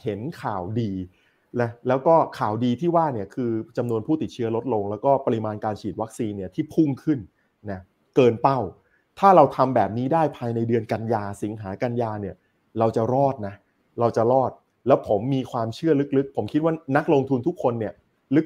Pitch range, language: 110-145 Hz, Thai